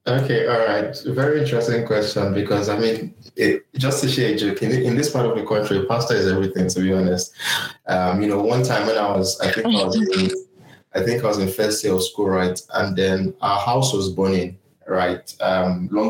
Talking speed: 225 wpm